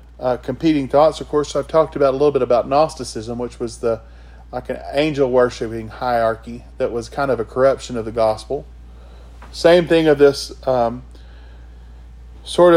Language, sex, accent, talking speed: English, male, American, 175 wpm